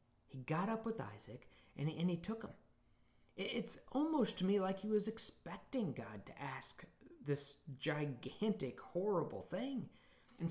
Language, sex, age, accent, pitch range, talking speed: English, male, 40-59, American, 130-170 Hz, 150 wpm